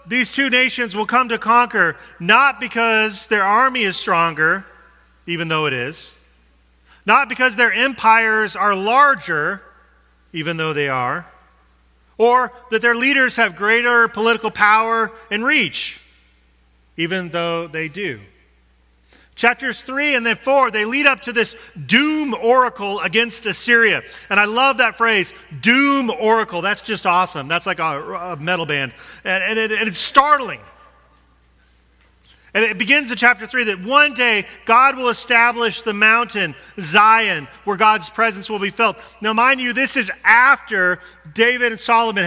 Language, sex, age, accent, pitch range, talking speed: English, male, 40-59, American, 170-235 Hz, 145 wpm